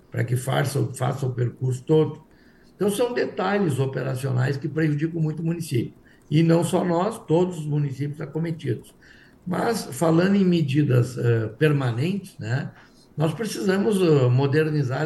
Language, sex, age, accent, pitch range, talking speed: Portuguese, male, 60-79, Brazilian, 140-180 Hz, 140 wpm